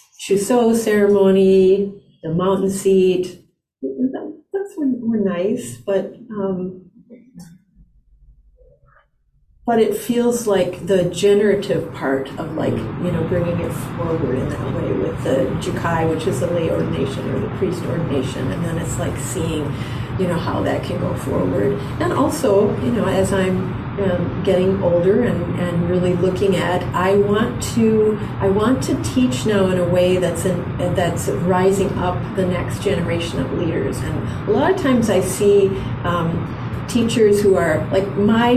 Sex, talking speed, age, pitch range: female, 155 wpm, 40-59, 175-210 Hz